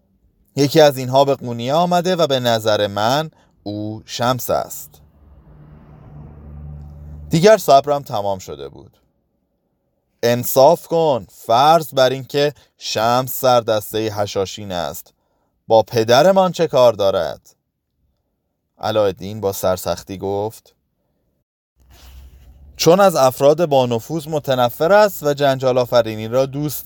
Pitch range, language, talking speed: 100-140 Hz, Persian, 110 wpm